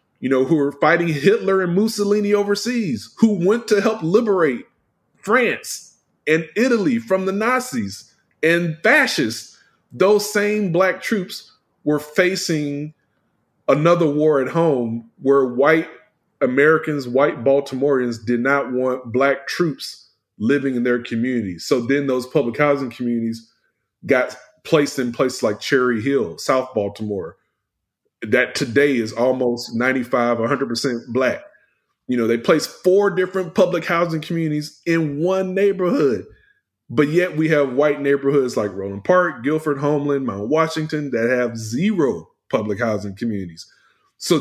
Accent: American